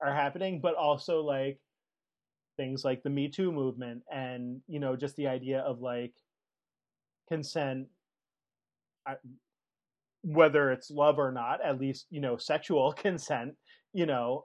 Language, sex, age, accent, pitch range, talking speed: English, male, 30-49, American, 130-155 Hz, 140 wpm